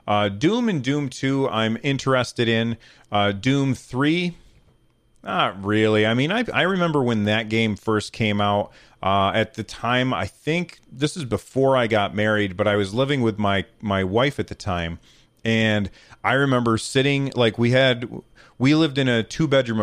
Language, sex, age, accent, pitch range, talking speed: English, male, 30-49, American, 105-130 Hz, 180 wpm